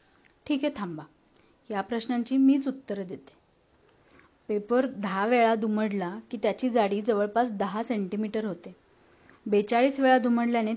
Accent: native